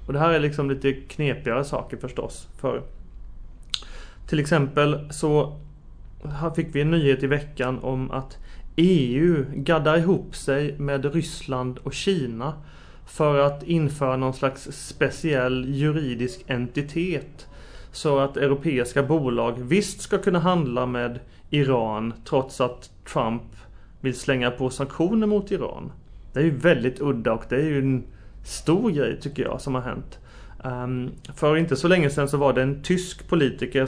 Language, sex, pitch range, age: Swedish, male, 125-150 Hz, 30-49